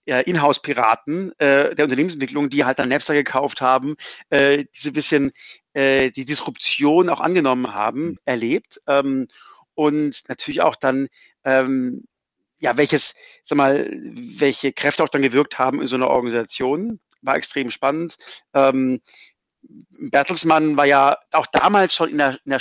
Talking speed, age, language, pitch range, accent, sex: 150 wpm, 50-69, German, 130-160 Hz, German, male